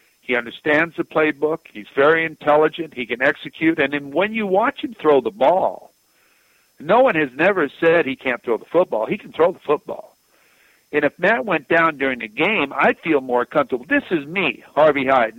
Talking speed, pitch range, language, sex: 200 wpm, 130-165 Hz, English, male